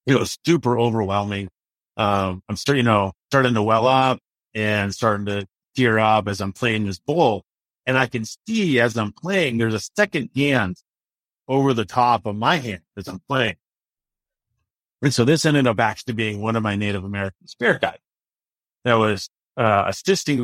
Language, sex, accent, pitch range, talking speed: English, male, American, 105-135 Hz, 180 wpm